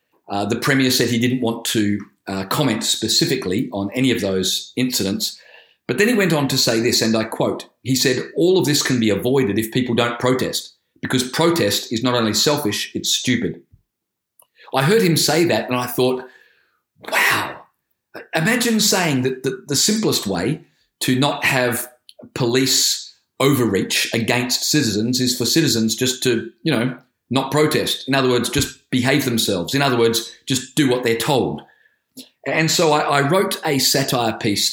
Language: English